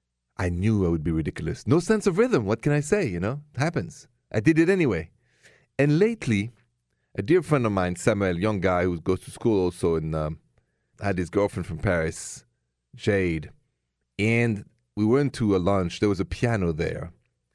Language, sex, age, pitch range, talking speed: English, male, 40-59, 85-130 Hz, 195 wpm